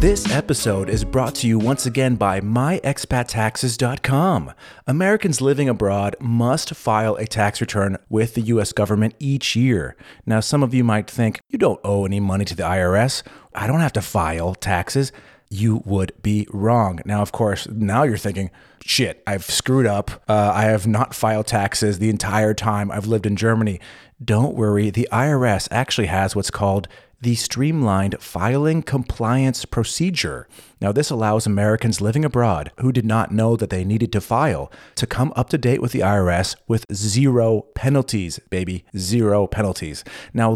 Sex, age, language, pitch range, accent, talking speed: male, 30-49, English, 100-125 Hz, American, 170 wpm